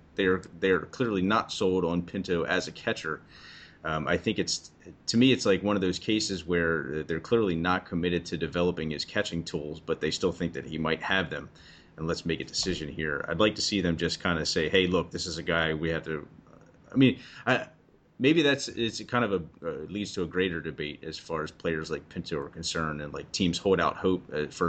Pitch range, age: 75-95 Hz, 30-49